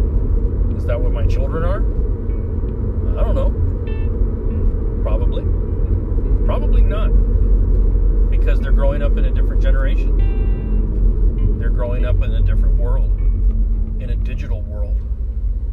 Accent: American